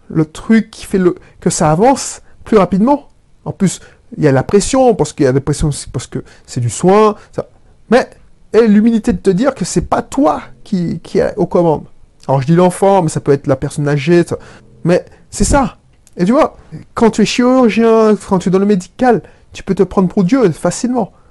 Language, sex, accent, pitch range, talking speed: French, male, French, 150-215 Hz, 225 wpm